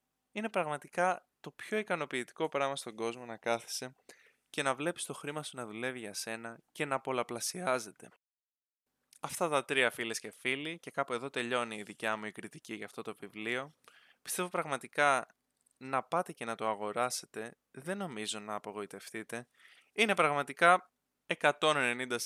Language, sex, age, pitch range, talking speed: Greek, male, 20-39, 115-145 Hz, 155 wpm